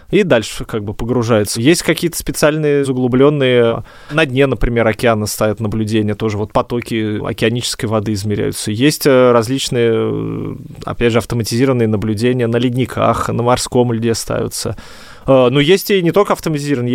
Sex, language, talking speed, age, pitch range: male, Russian, 140 wpm, 20-39, 110-135 Hz